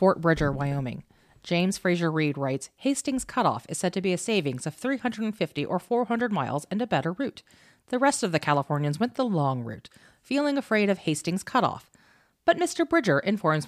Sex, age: female, 30-49